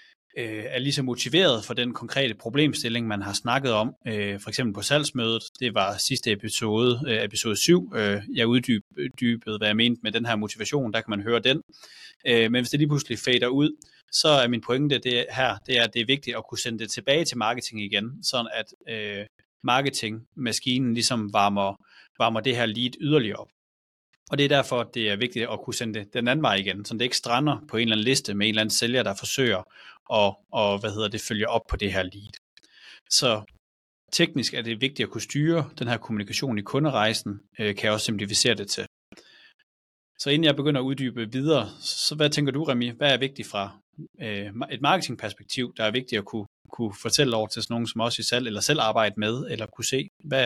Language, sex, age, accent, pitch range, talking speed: Danish, male, 30-49, native, 105-130 Hz, 210 wpm